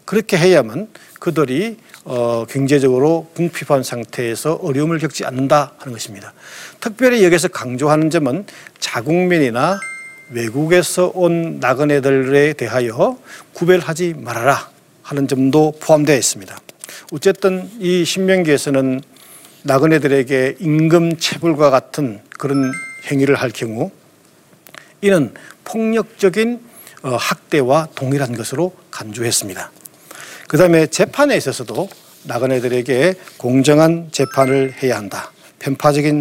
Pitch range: 130-170 Hz